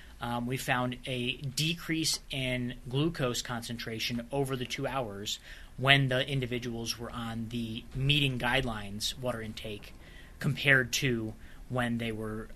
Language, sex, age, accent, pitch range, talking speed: English, male, 20-39, American, 115-145 Hz, 130 wpm